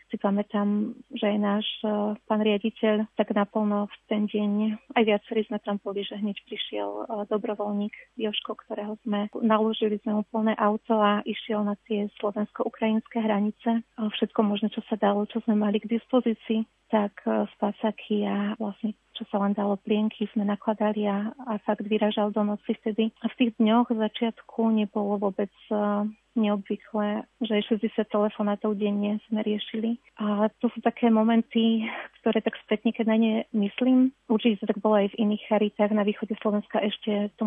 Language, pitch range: Slovak, 210-225 Hz